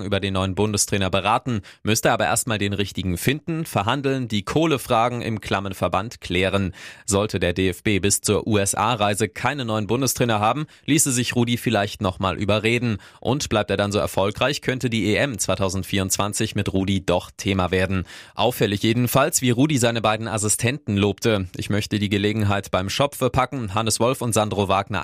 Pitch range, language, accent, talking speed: 100-120 Hz, German, German, 165 wpm